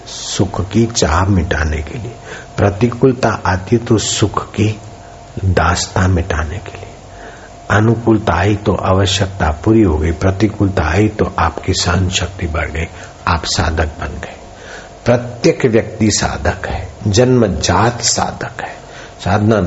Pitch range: 90-110 Hz